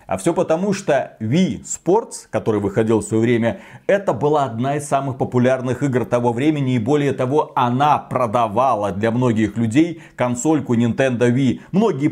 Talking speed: 160 wpm